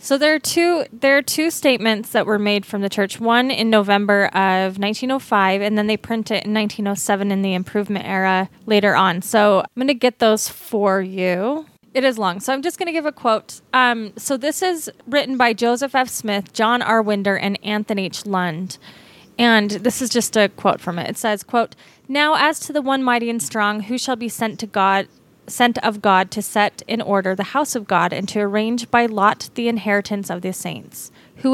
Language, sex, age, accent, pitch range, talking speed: English, female, 20-39, American, 200-250 Hz, 215 wpm